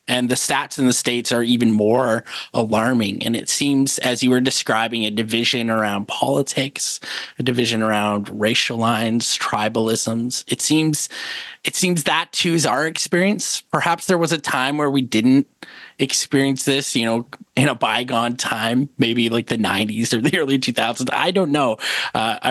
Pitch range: 115-140 Hz